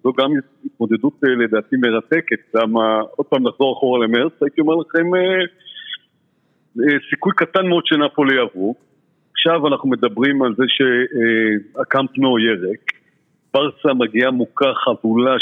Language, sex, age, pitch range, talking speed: Hebrew, male, 50-69, 120-150 Hz, 130 wpm